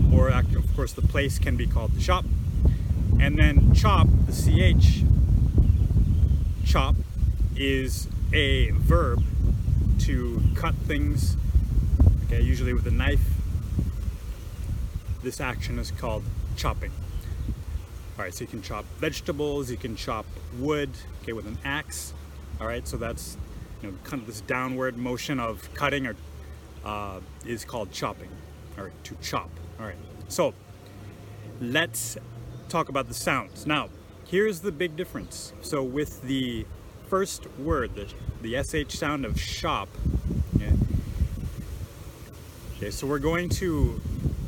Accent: American